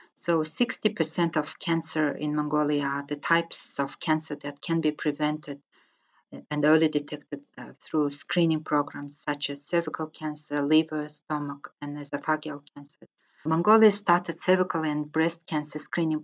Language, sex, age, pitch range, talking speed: English, female, 40-59, 145-165 Hz, 135 wpm